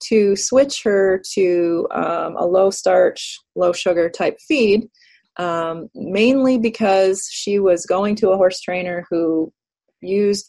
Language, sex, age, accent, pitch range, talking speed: English, female, 30-49, American, 170-200 Hz, 135 wpm